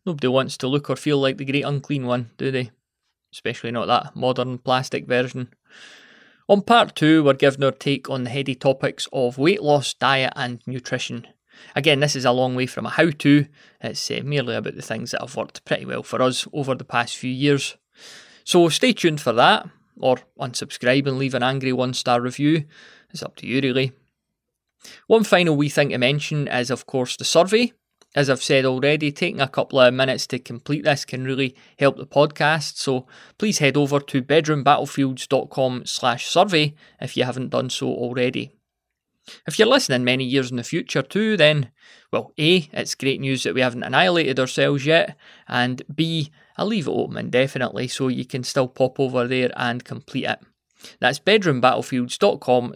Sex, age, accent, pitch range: male, 20-39, British, 125-150 Hz